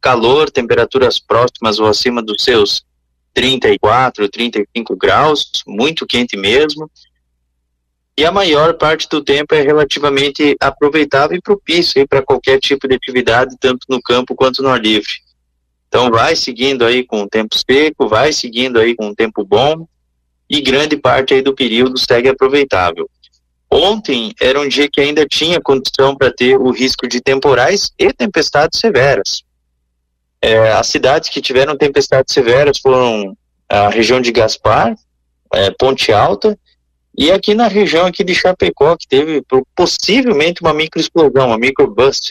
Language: Portuguese